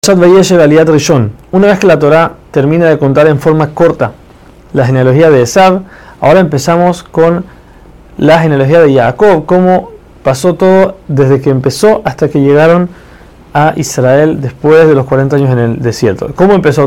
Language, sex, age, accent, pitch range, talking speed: Spanish, male, 30-49, Argentinian, 135-175 Hz, 155 wpm